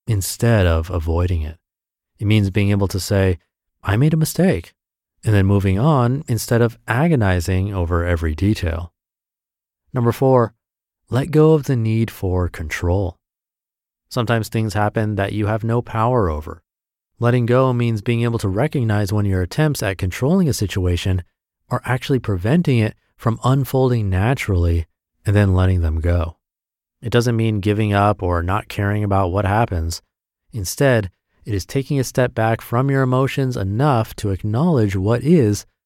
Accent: American